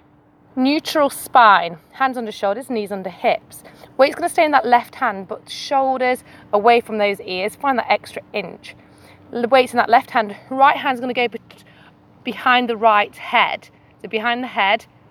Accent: British